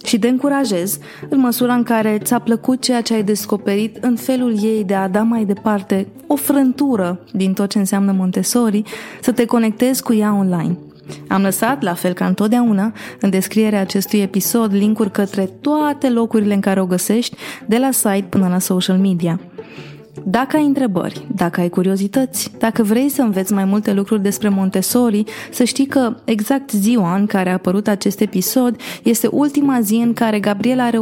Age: 20-39